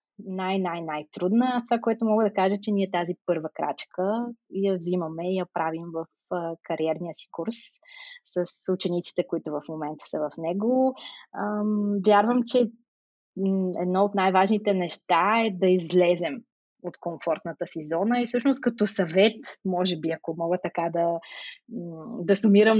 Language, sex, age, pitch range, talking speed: Bulgarian, female, 20-39, 175-220 Hz, 140 wpm